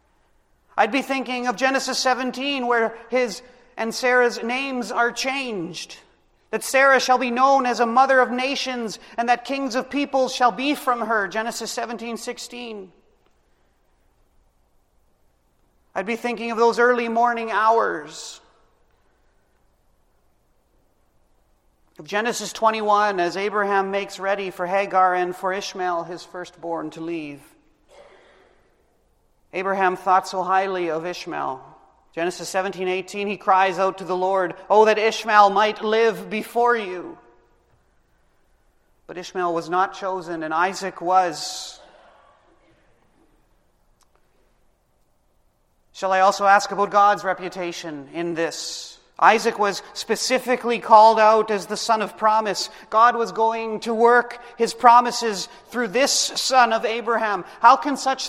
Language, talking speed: English, 125 wpm